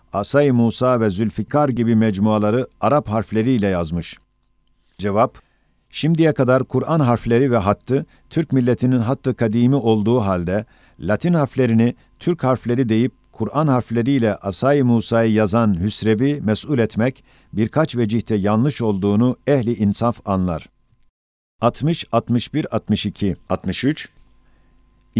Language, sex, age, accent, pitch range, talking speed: Turkish, male, 50-69, native, 110-135 Hz, 100 wpm